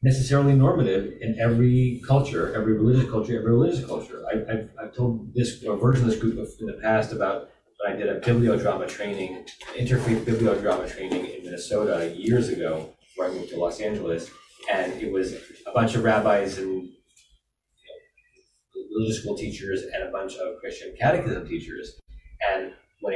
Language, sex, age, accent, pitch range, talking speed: English, male, 30-49, American, 110-135 Hz, 170 wpm